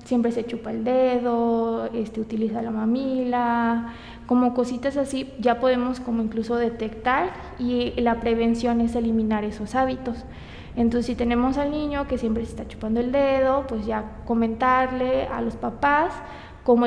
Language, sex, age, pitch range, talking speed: Spanish, female, 20-39, 230-255 Hz, 155 wpm